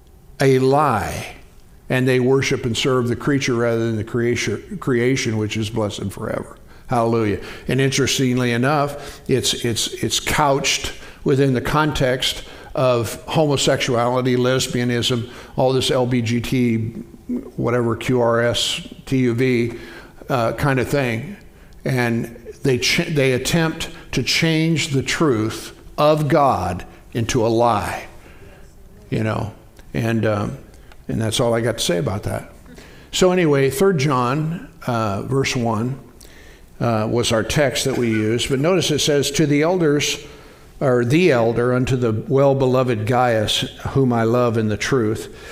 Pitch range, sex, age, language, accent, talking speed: 115-140 Hz, male, 60-79, English, American, 135 wpm